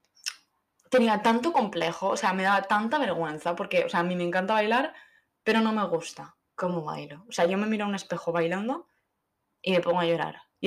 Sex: female